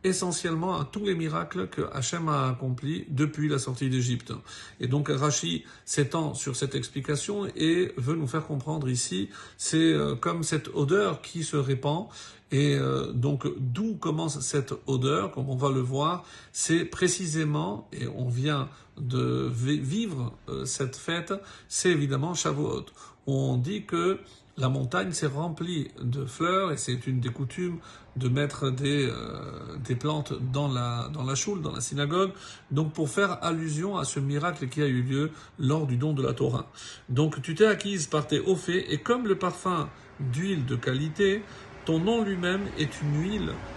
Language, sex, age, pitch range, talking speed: French, male, 50-69, 135-170 Hz, 170 wpm